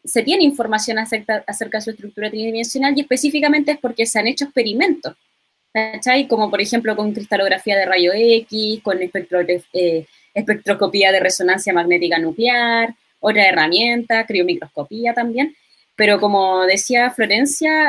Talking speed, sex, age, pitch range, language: 140 wpm, female, 20-39, 215-270 Hz, Spanish